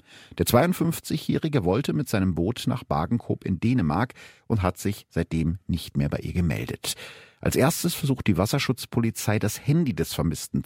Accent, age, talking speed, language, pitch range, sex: German, 50-69, 160 wpm, German, 100-125 Hz, male